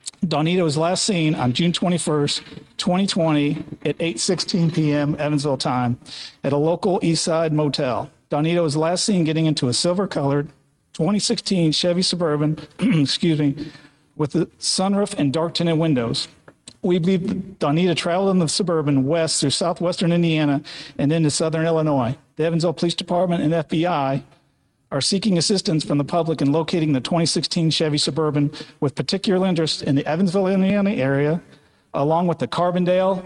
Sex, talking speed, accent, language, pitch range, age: male, 150 wpm, American, English, 145-175 Hz, 50-69